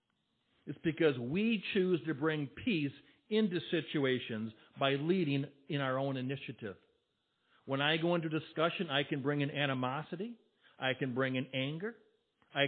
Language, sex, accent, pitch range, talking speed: English, male, American, 125-160 Hz, 145 wpm